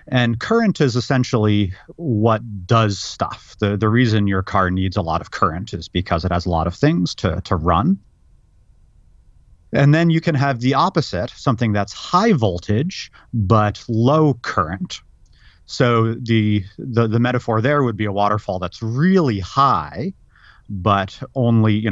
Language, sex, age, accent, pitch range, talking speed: English, male, 30-49, American, 95-125 Hz, 160 wpm